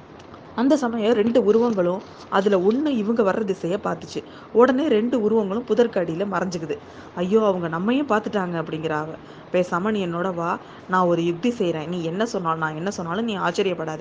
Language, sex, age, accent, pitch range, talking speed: Tamil, female, 20-39, native, 175-235 Hz, 150 wpm